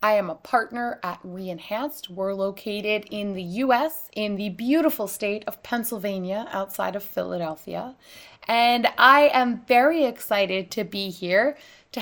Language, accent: English, American